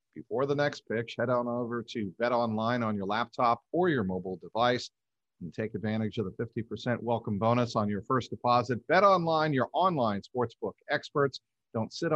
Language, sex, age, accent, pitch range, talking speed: English, male, 50-69, American, 110-130 Hz, 185 wpm